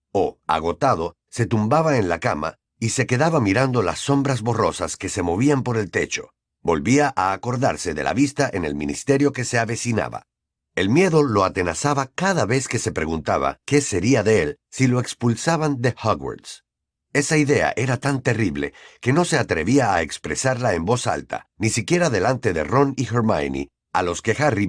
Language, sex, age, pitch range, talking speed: Spanish, male, 50-69, 95-140 Hz, 180 wpm